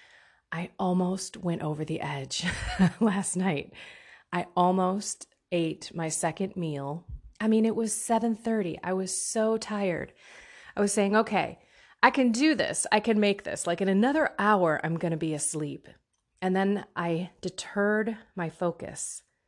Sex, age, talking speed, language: female, 30-49, 155 wpm, English